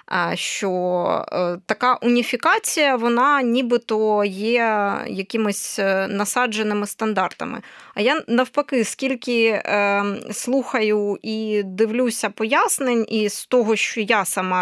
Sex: female